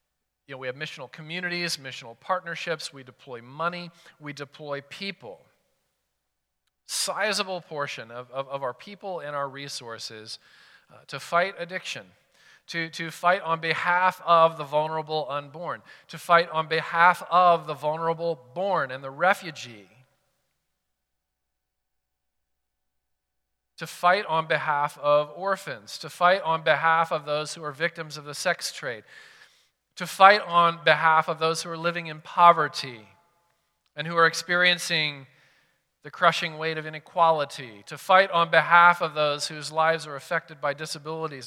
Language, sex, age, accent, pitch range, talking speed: English, male, 40-59, American, 145-175 Hz, 145 wpm